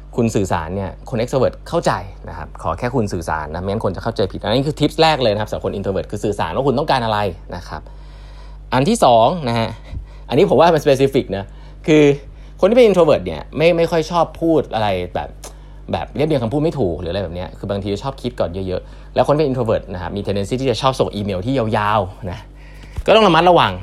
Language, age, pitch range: Thai, 20-39, 95-135 Hz